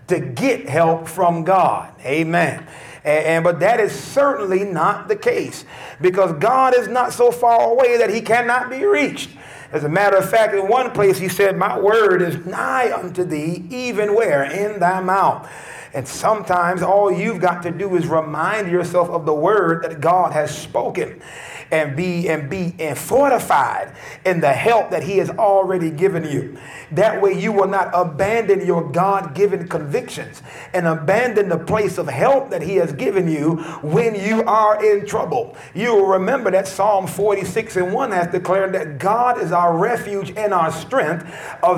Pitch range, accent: 165-210 Hz, American